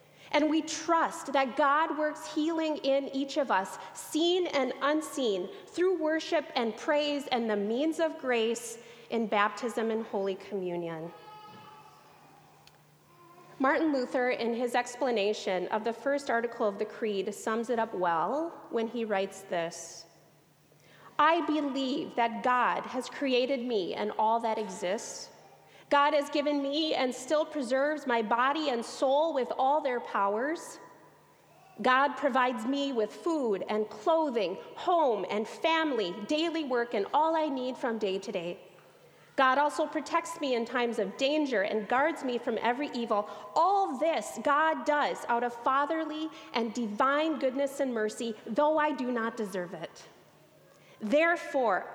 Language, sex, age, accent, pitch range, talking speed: English, female, 30-49, American, 230-305 Hz, 145 wpm